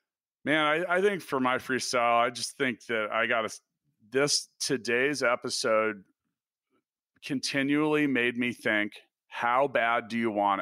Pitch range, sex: 125-180 Hz, male